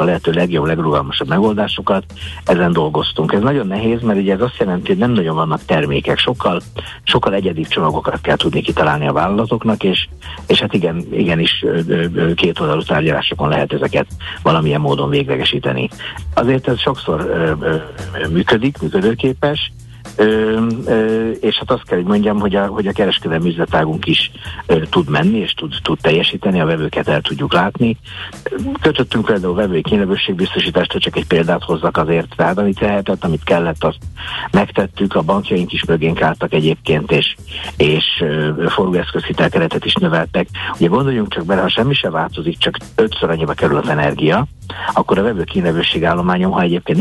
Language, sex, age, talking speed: Hungarian, male, 60-79, 160 wpm